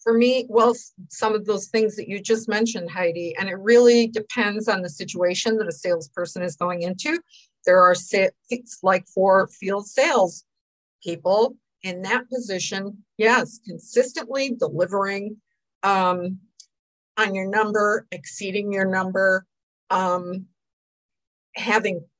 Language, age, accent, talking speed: English, 50-69, American, 130 wpm